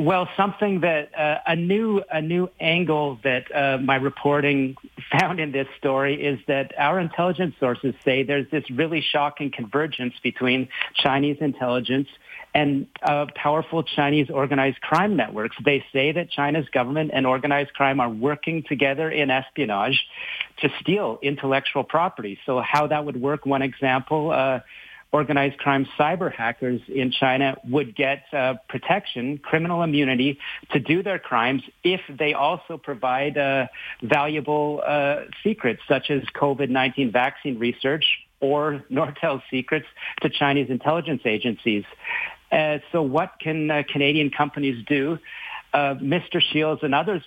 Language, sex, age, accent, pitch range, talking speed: English, male, 50-69, American, 135-155 Hz, 140 wpm